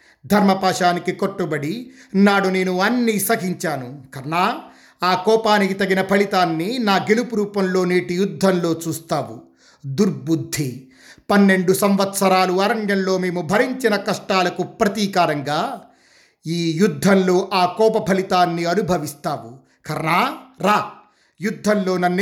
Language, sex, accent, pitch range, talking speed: Telugu, male, native, 155-195 Hz, 90 wpm